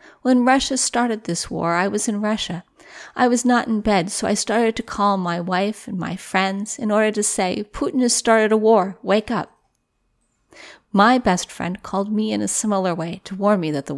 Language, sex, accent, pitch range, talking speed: English, female, American, 185-245 Hz, 210 wpm